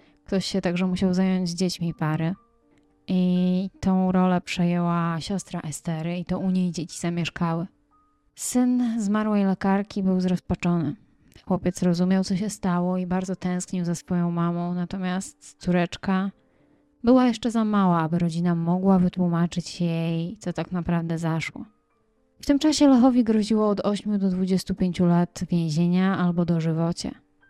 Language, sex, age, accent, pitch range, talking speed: Polish, female, 20-39, native, 170-195 Hz, 135 wpm